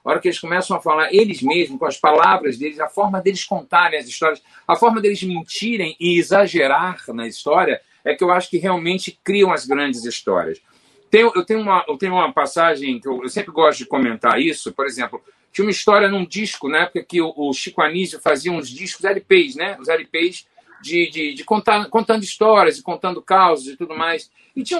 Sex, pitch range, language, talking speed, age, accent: male, 175-230 Hz, Portuguese, 195 wpm, 50-69, Brazilian